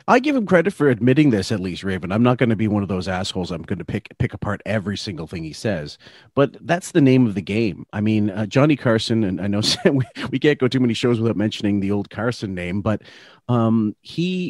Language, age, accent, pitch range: English, 40-59, American, 100-125 Hz